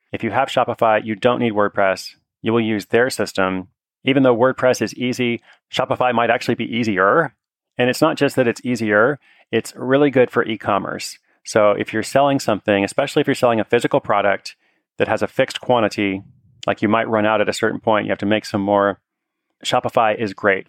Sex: male